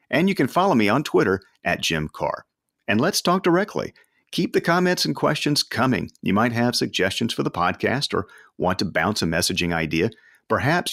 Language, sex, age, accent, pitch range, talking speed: English, male, 50-69, American, 90-125 Hz, 190 wpm